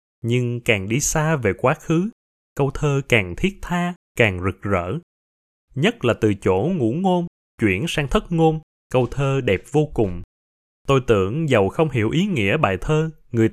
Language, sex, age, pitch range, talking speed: Vietnamese, male, 20-39, 100-160 Hz, 180 wpm